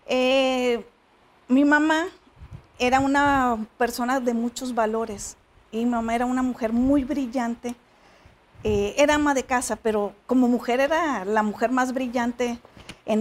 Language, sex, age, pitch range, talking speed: English, female, 40-59, 220-265 Hz, 140 wpm